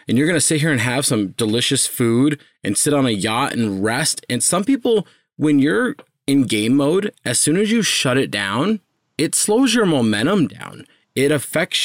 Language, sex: English, male